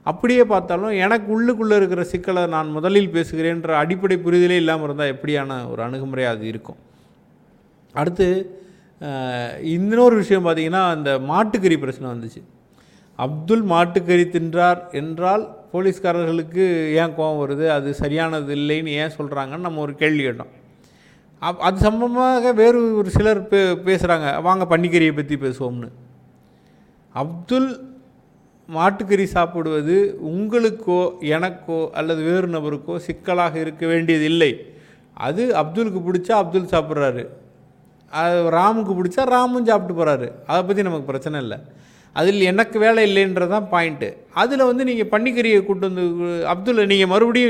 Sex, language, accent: male, Tamil, native